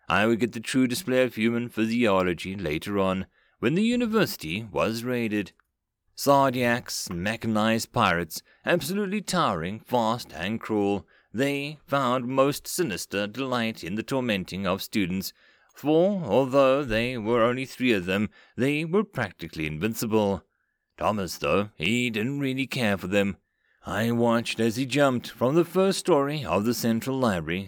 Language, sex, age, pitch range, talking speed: English, male, 30-49, 105-135 Hz, 145 wpm